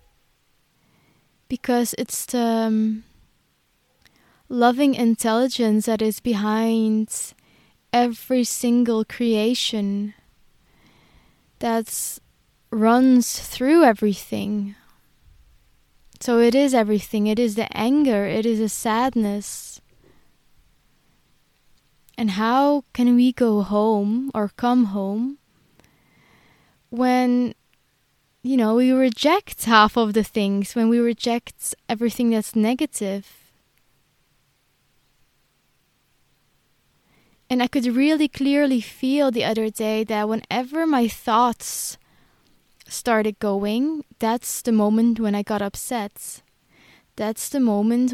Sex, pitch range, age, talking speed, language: female, 220-250 Hz, 20-39, 95 wpm, English